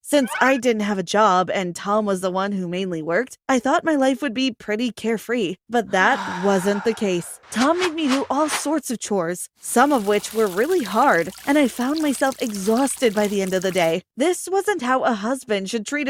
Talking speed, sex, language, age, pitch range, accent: 220 wpm, female, English, 20-39, 215-290 Hz, American